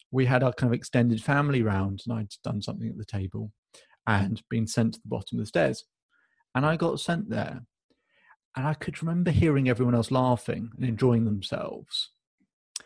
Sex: male